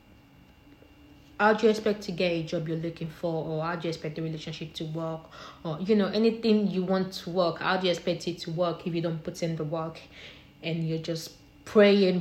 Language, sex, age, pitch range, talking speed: English, female, 20-39, 165-210 Hz, 225 wpm